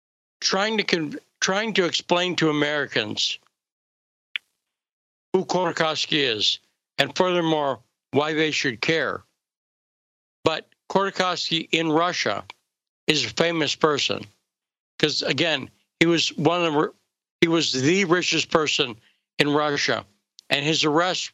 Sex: male